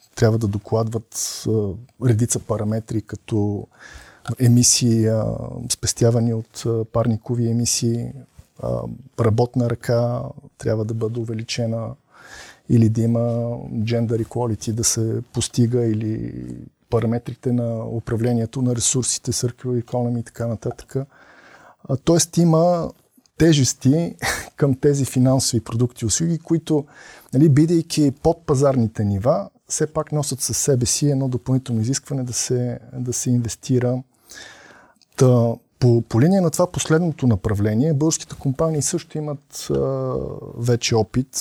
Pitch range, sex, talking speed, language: 115-135 Hz, male, 120 wpm, Bulgarian